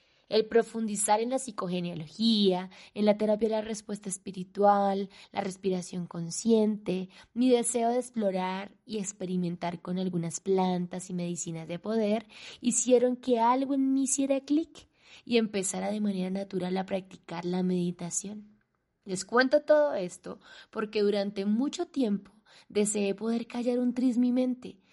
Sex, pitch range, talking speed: female, 185-230 Hz, 140 wpm